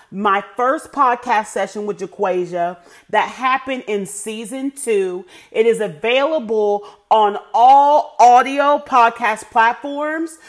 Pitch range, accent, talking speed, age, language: 210-265 Hz, American, 110 wpm, 40-59, English